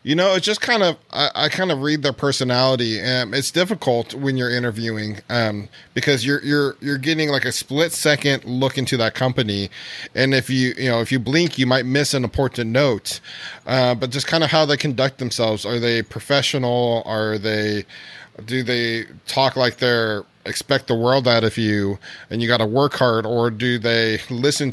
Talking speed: 200 wpm